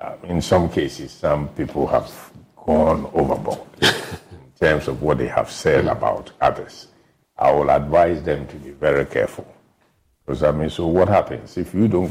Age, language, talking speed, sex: 60-79, English, 170 wpm, male